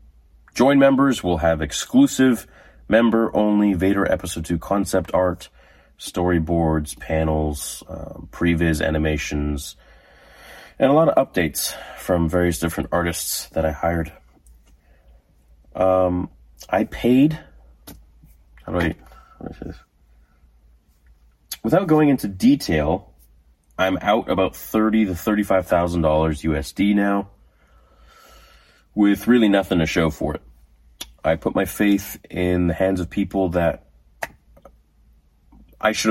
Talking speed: 115 wpm